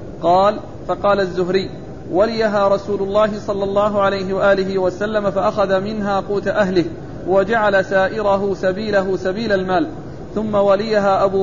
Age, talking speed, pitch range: 40-59, 120 wpm, 190-210 Hz